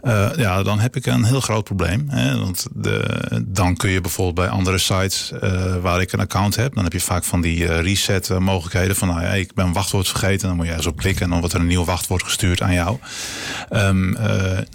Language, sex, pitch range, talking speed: Dutch, male, 90-100 Hz, 240 wpm